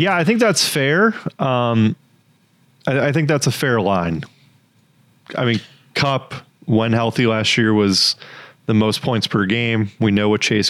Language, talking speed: English, 170 wpm